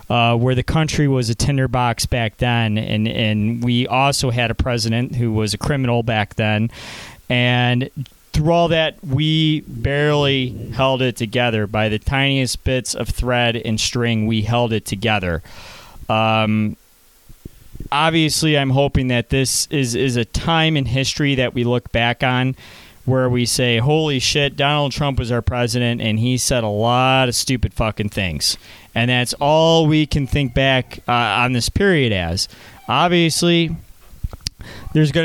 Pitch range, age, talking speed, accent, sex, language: 110-140 Hz, 30-49, 160 wpm, American, male, English